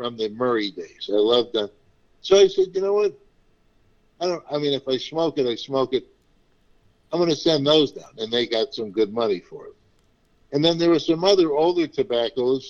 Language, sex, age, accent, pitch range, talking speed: English, male, 60-79, American, 120-165 Hz, 215 wpm